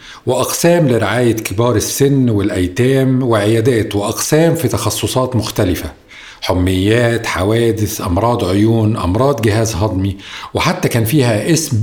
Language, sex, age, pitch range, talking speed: Arabic, male, 50-69, 105-140 Hz, 105 wpm